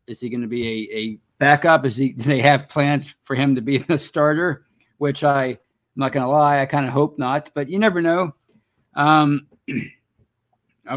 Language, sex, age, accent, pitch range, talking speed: English, male, 50-69, American, 120-150 Hz, 210 wpm